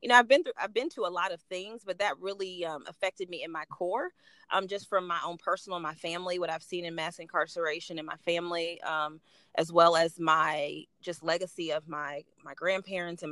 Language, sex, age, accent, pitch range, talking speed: English, female, 30-49, American, 170-190 Hz, 225 wpm